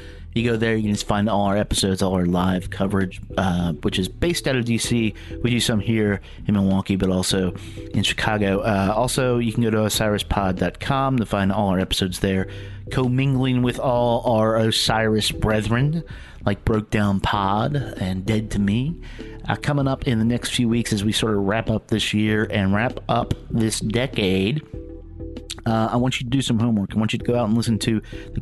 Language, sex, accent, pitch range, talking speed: English, male, American, 100-120 Hz, 205 wpm